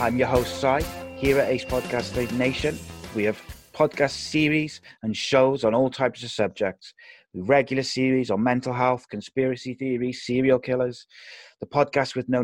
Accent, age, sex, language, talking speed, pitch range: British, 30-49, male, English, 165 wpm, 115-130 Hz